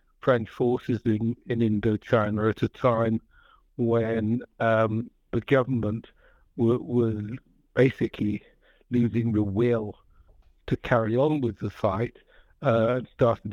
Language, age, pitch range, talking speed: English, 60-79, 110-125 Hz, 120 wpm